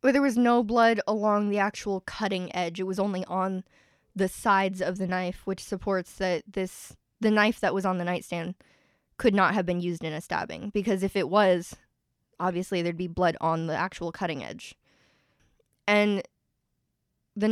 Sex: female